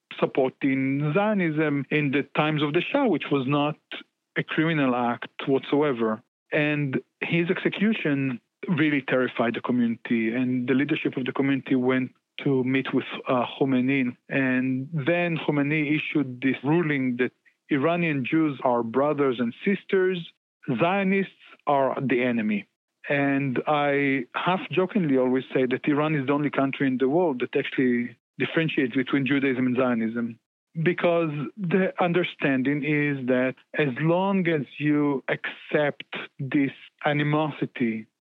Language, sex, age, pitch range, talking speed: English, male, 40-59, 130-155 Hz, 130 wpm